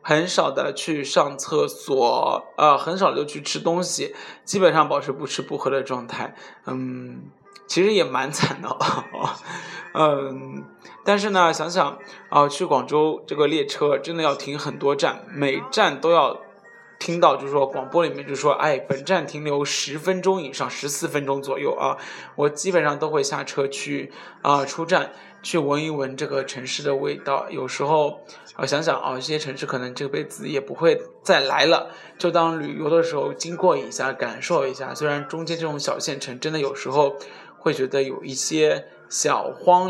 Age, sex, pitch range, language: 20-39, male, 140-170 Hz, Chinese